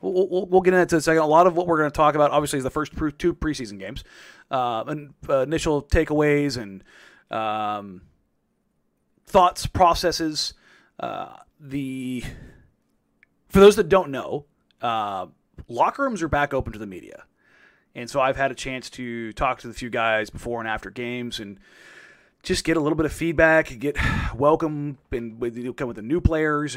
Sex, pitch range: male, 120-165 Hz